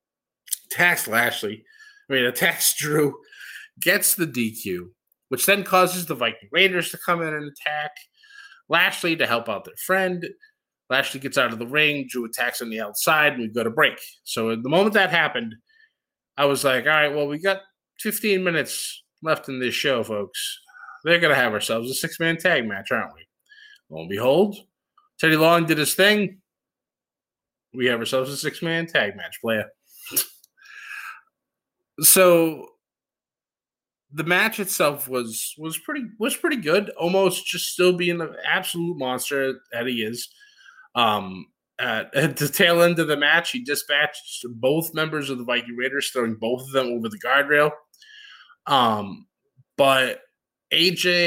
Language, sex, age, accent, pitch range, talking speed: English, male, 20-39, American, 135-190 Hz, 160 wpm